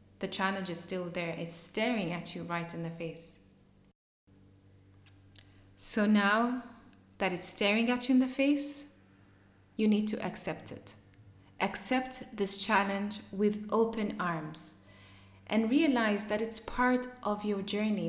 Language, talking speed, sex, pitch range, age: English, 140 wpm, female, 160-225 Hz, 20-39